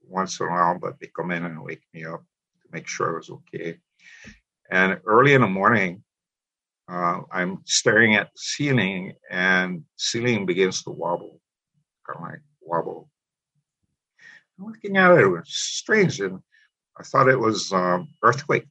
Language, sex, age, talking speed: English, male, 50-69, 160 wpm